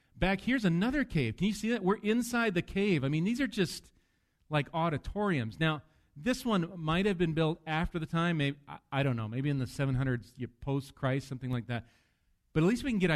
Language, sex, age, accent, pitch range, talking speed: English, male, 40-59, American, 125-165 Hz, 225 wpm